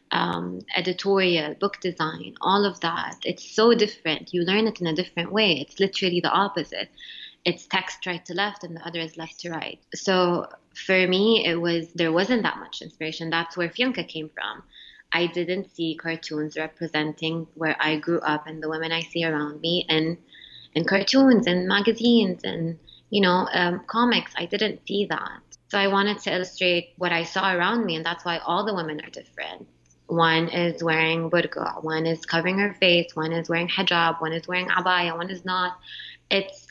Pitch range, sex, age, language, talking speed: 165-185 Hz, female, 20-39, English, 190 wpm